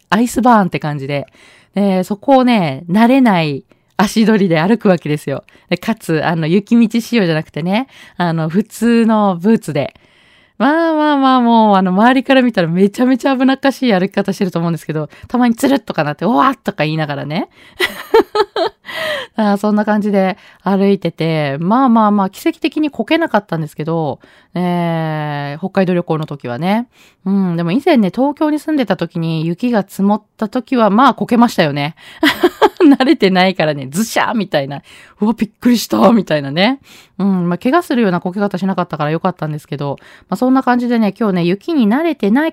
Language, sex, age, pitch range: Japanese, female, 20-39, 170-235 Hz